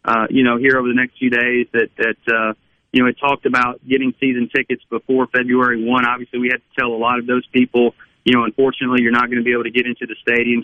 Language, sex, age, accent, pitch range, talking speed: English, male, 40-59, American, 120-135 Hz, 260 wpm